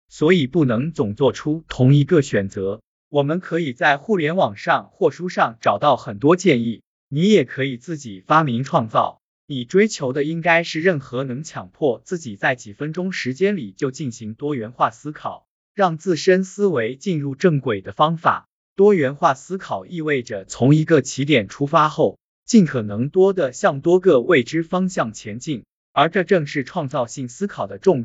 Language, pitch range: Chinese, 130-185 Hz